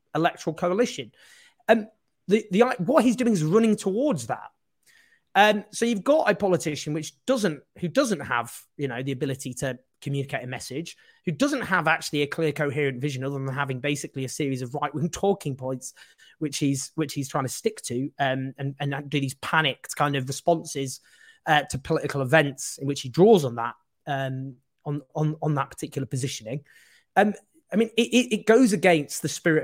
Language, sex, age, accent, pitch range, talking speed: English, male, 30-49, British, 130-175 Hz, 195 wpm